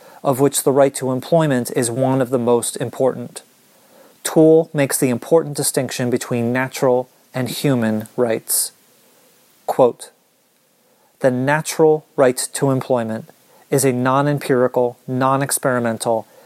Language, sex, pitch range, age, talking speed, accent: English, male, 125-145 Hz, 30-49, 115 wpm, American